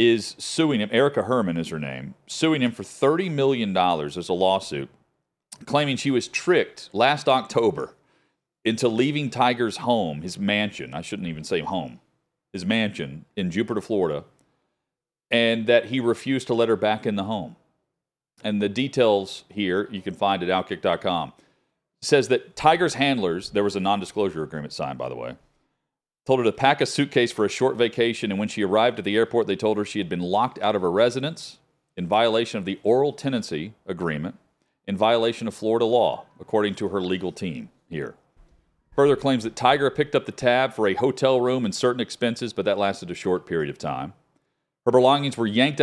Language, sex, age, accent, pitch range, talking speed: English, male, 40-59, American, 100-130 Hz, 190 wpm